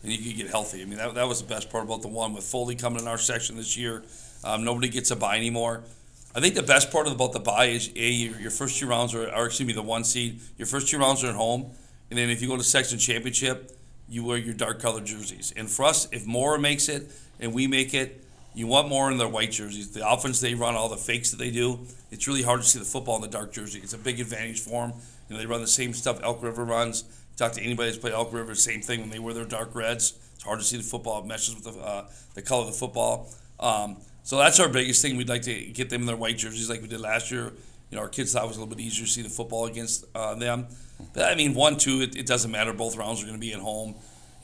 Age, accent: 40-59, American